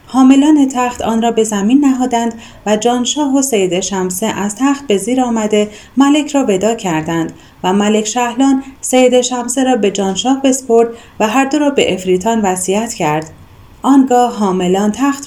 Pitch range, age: 205-265 Hz, 30-49